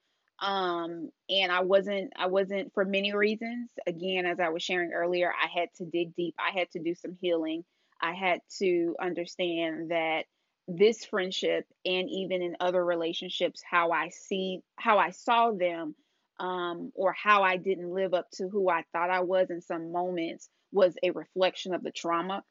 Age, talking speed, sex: 20-39, 180 wpm, female